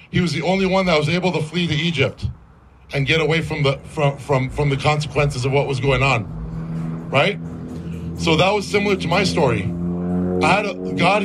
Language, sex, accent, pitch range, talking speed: English, male, American, 135-180 Hz, 210 wpm